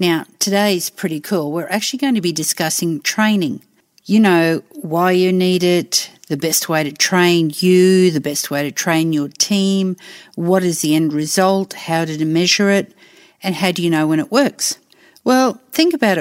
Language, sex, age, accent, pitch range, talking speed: English, female, 50-69, Australian, 165-195 Hz, 190 wpm